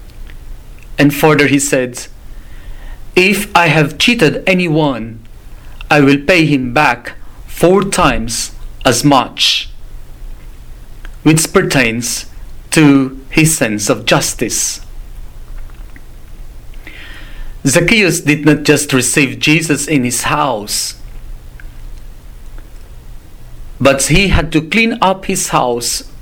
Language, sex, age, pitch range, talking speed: English, male, 40-59, 115-160 Hz, 95 wpm